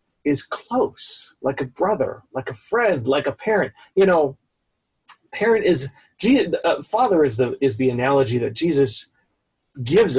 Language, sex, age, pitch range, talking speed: English, male, 40-59, 135-190 Hz, 145 wpm